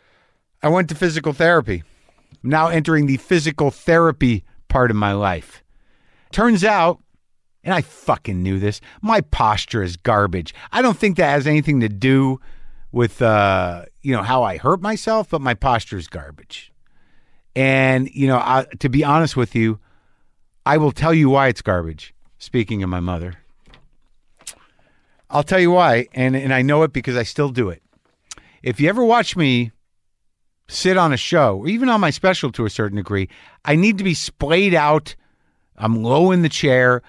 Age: 50-69